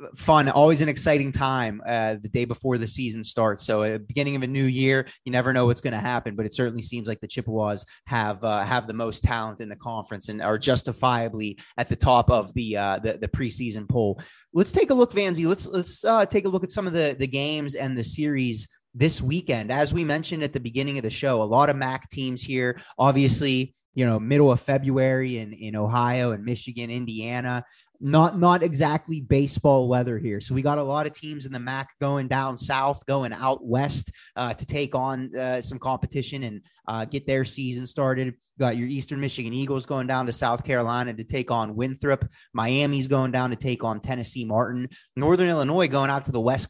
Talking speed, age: 215 wpm, 20-39